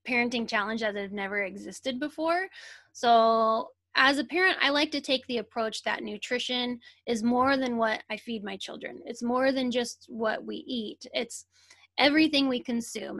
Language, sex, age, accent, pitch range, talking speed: English, female, 10-29, American, 215-275 Hz, 175 wpm